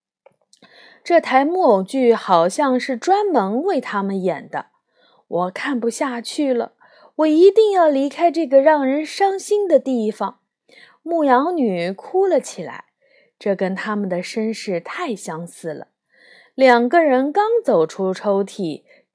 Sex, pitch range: female, 205-335 Hz